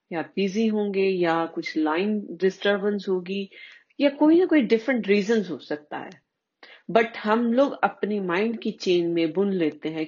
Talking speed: 165 wpm